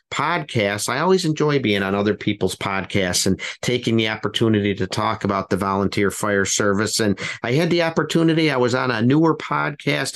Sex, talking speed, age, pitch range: male, 185 wpm, 50-69, 105-130 Hz